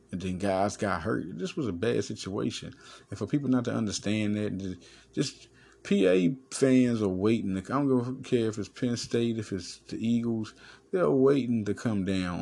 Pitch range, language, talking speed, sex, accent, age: 95-125 Hz, English, 200 wpm, male, American, 30-49